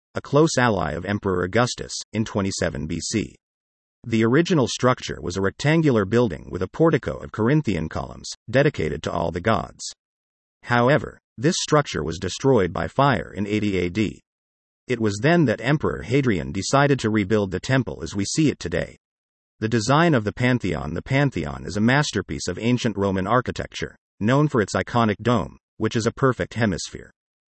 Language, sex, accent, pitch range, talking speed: English, male, American, 95-130 Hz, 170 wpm